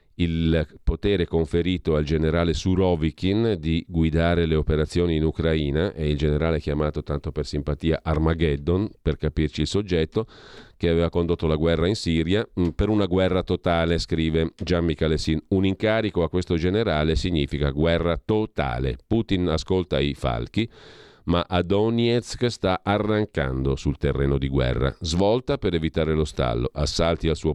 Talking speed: 145 wpm